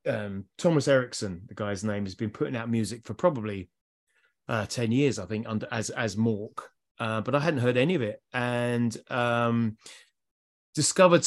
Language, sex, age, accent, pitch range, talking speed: English, male, 30-49, British, 115-150 Hz, 175 wpm